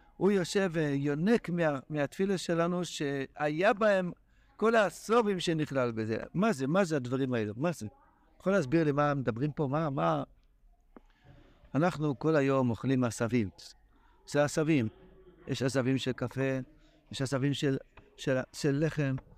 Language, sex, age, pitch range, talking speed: Hebrew, male, 60-79, 135-180 Hz, 140 wpm